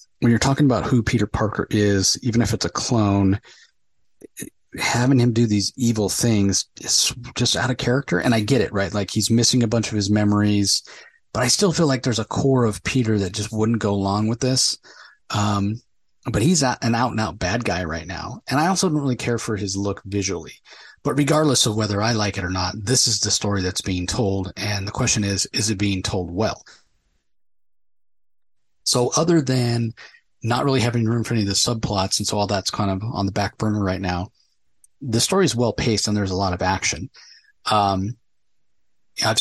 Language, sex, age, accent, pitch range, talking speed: English, male, 30-49, American, 100-120 Hz, 205 wpm